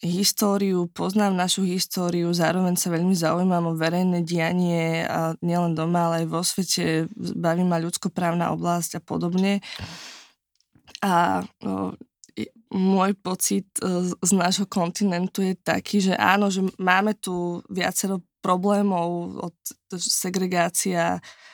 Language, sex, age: Slovak, female, 20-39